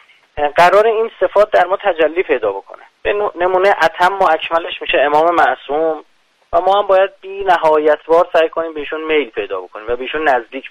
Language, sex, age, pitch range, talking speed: Persian, male, 30-49, 130-190 Hz, 170 wpm